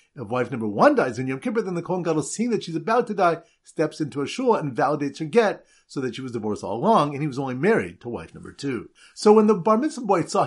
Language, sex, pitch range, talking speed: English, male, 145-210 Hz, 275 wpm